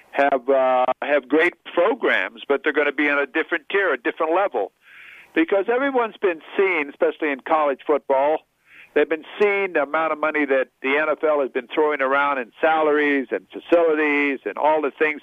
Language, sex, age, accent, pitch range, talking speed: English, male, 60-79, American, 150-180 Hz, 185 wpm